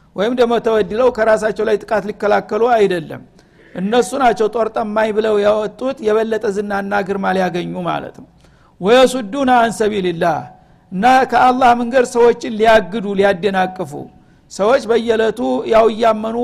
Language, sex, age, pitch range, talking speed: Amharic, male, 60-79, 205-230 Hz, 120 wpm